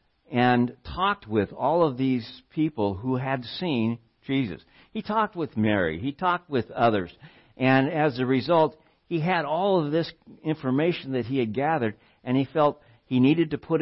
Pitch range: 110-145 Hz